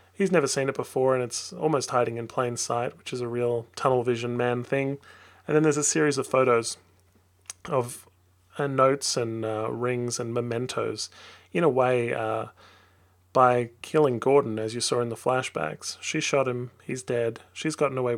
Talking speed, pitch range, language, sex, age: 185 wpm, 115-130 Hz, English, male, 30-49